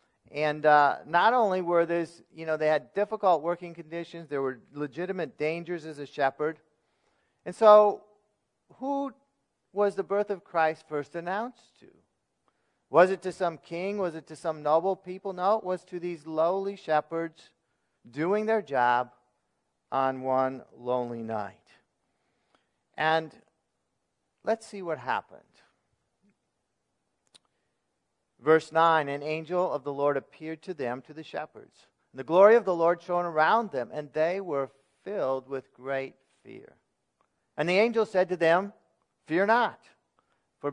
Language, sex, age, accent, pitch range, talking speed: English, male, 50-69, American, 135-180 Hz, 145 wpm